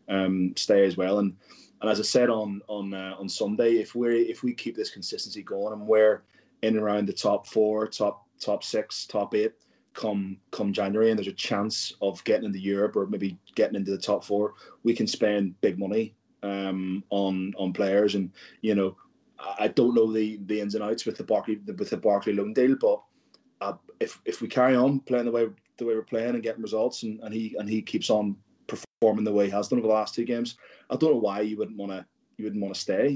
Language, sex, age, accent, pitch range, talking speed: English, male, 20-39, British, 100-115 Hz, 235 wpm